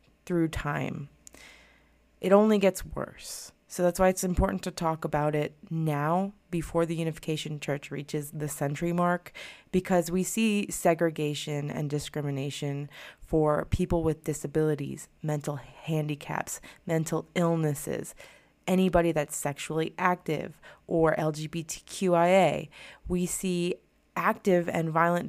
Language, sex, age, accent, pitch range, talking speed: English, female, 20-39, American, 150-180 Hz, 115 wpm